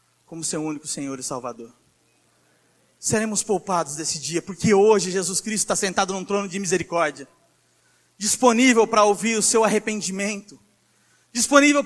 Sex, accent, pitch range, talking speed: male, Brazilian, 175-240 Hz, 135 wpm